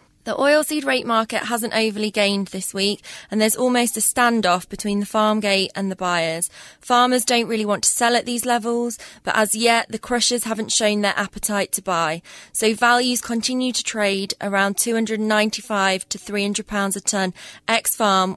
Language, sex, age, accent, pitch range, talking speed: English, female, 20-39, British, 185-220 Hz, 175 wpm